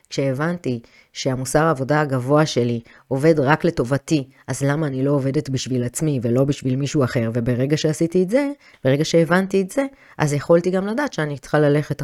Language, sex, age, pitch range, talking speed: Hebrew, female, 30-49, 125-170 Hz, 170 wpm